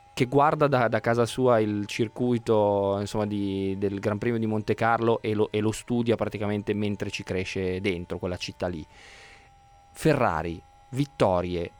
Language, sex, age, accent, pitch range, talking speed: Italian, male, 20-39, native, 100-120 Hz, 160 wpm